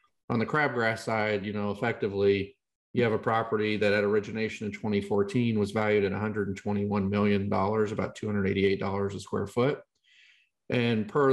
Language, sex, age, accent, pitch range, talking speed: English, male, 40-59, American, 100-115 Hz, 155 wpm